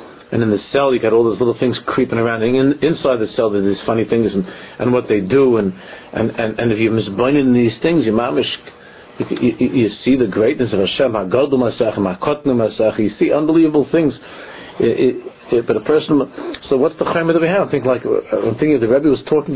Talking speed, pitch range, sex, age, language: 220 wpm, 115-150 Hz, male, 50-69, English